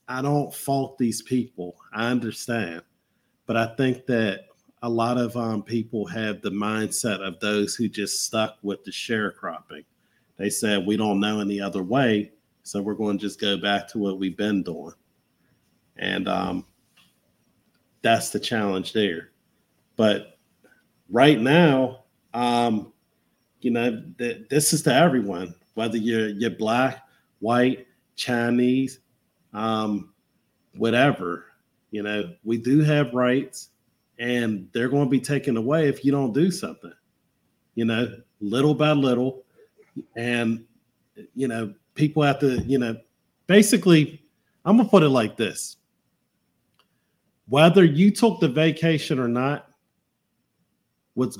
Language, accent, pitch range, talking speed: English, American, 110-135 Hz, 140 wpm